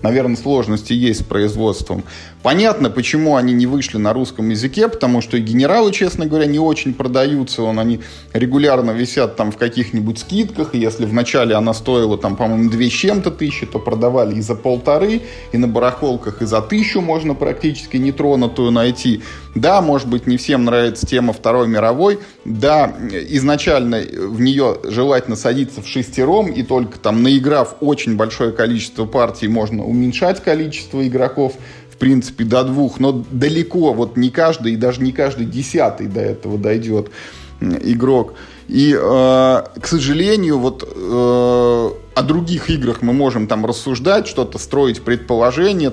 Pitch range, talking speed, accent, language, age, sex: 115-140 Hz, 150 wpm, native, Russian, 20-39, male